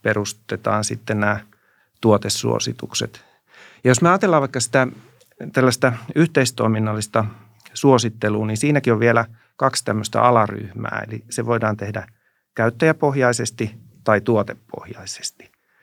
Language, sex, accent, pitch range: Finnish, male, native, 105-125 Hz